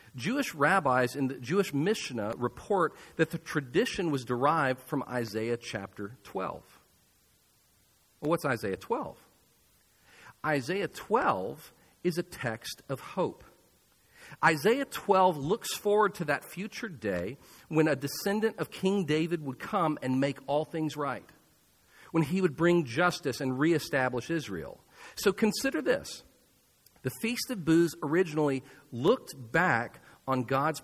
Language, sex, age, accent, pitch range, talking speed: English, male, 50-69, American, 140-195 Hz, 130 wpm